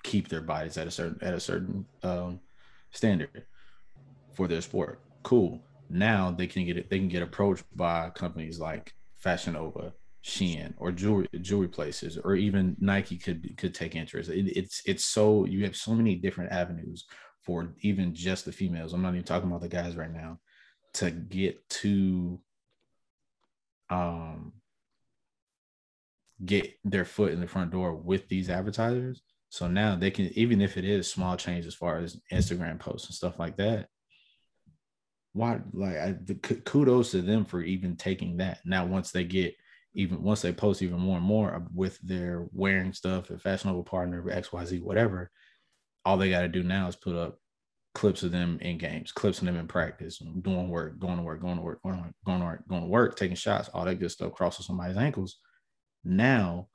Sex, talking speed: male, 185 wpm